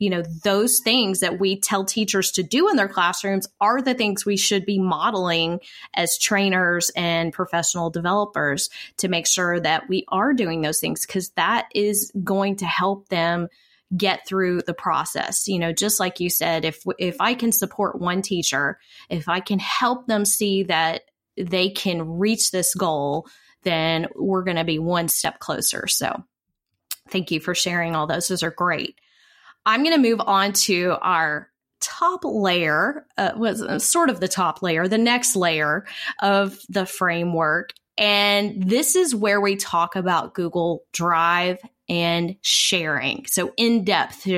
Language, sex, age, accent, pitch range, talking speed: English, female, 20-39, American, 170-205 Hz, 165 wpm